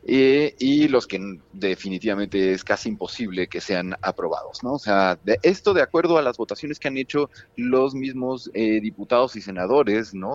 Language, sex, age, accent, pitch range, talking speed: Spanish, male, 30-49, Mexican, 100-135 Hz, 180 wpm